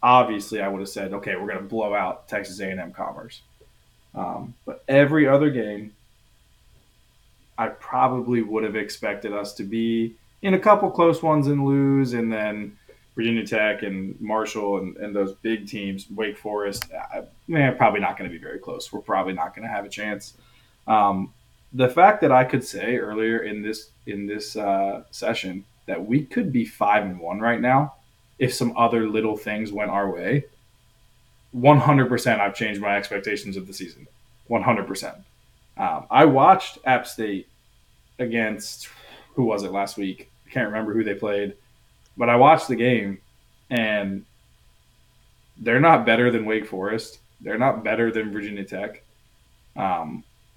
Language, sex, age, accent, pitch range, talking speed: English, male, 20-39, American, 100-125 Hz, 165 wpm